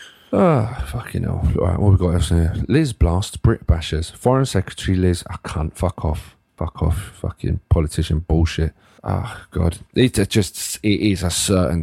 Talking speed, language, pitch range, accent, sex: 190 wpm, English, 80-95 Hz, British, male